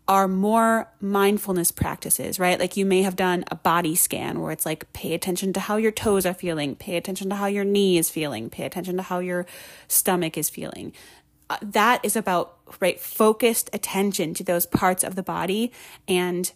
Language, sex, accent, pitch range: English, female, American, 170-200 Hz